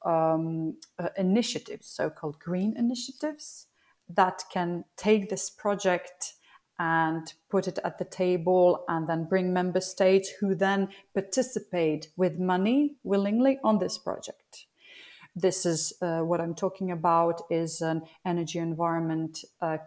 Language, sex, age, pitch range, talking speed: English, female, 30-49, 165-205 Hz, 130 wpm